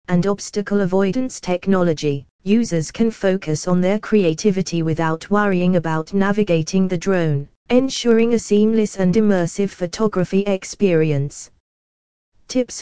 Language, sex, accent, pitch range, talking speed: English, female, British, 170-215 Hz, 110 wpm